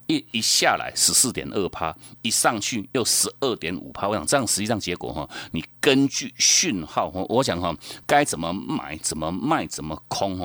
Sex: male